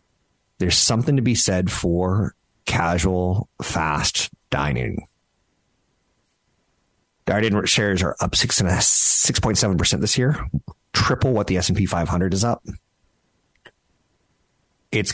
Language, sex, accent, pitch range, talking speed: English, male, American, 90-105 Hz, 115 wpm